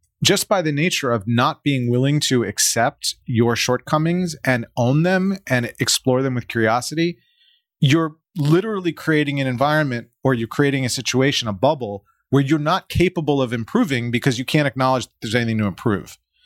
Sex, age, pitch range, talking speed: male, 30-49, 115-140 Hz, 170 wpm